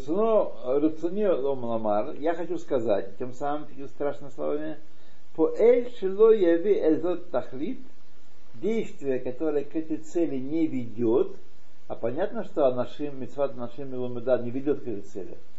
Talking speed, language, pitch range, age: 125 wpm, Russian, 120-165 Hz, 60-79